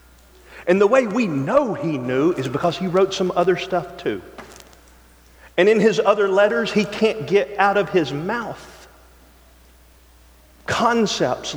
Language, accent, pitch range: English, American, 150-230 Hz